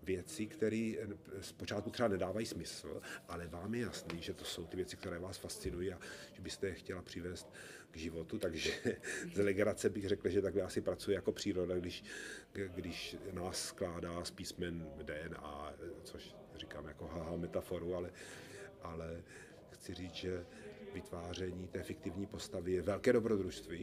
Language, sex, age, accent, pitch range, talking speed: Czech, male, 40-59, native, 85-100 Hz, 150 wpm